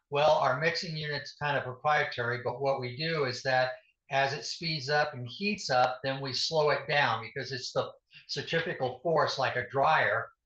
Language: English